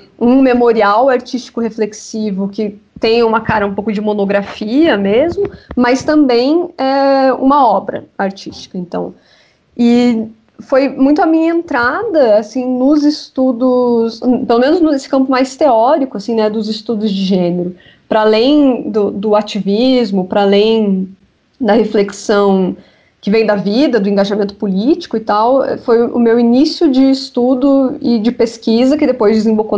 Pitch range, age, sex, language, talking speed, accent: 210-260 Hz, 20-39, female, Portuguese, 140 wpm, Brazilian